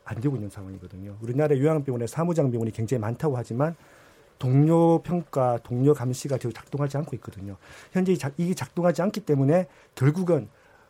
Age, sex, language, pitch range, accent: 40-59, male, Korean, 125-165 Hz, native